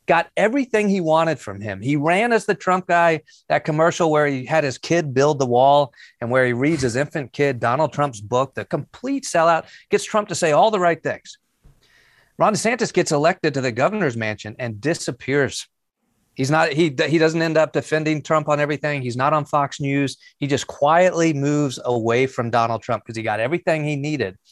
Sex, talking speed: male, 205 wpm